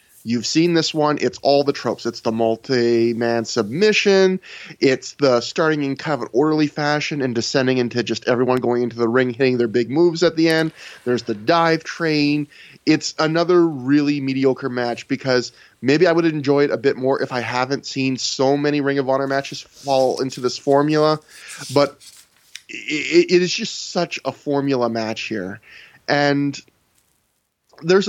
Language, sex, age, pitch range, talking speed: English, male, 20-39, 125-160 Hz, 175 wpm